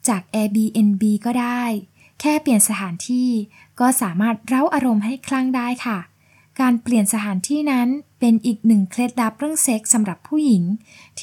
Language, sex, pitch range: Thai, female, 200-250 Hz